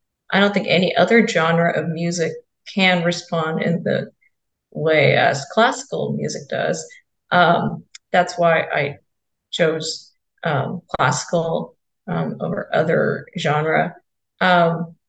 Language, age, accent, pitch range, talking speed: English, 30-49, American, 175-215 Hz, 115 wpm